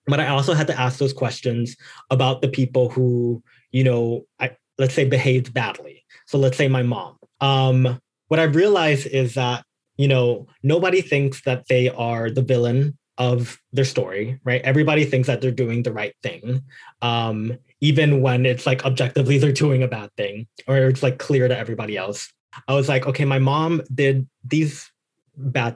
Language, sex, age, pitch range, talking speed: English, male, 20-39, 125-140 Hz, 180 wpm